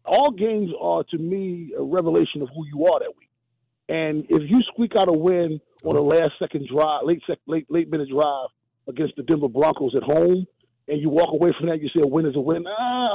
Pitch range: 150-230 Hz